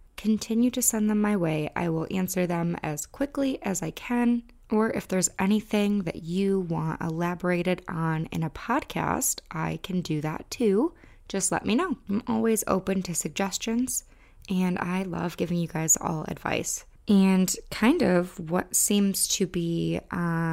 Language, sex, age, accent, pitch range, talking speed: English, female, 20-39, American, 165-200 Hz, 165 wpm